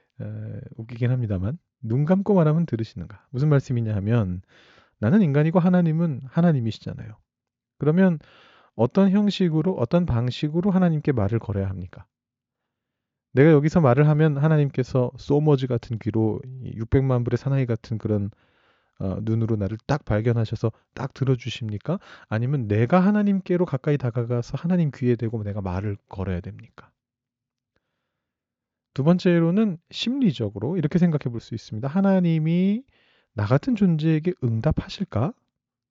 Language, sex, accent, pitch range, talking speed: English, male, Korean, 115-165 Hz, 110 wpm